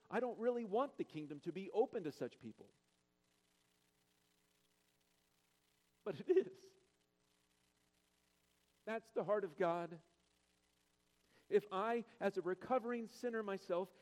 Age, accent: 50-69, American